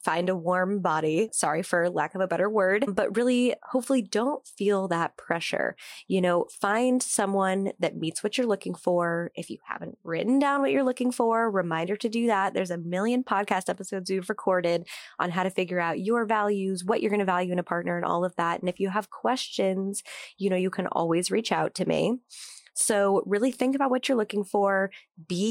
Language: English